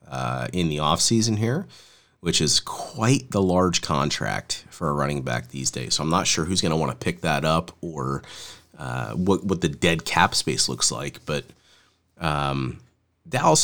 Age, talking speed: 30-49, 185 wpm